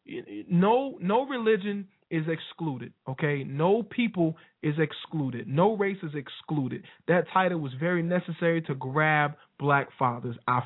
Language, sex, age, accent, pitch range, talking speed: English, male, 20-39, American, 135-160 Hz, 135 wpm